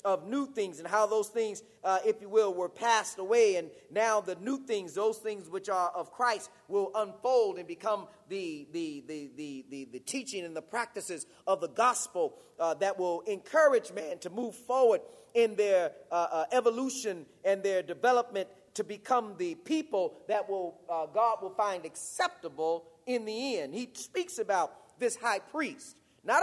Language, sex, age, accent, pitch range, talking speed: English, male, 30-49, American, 195-280 Hz, 180 wpm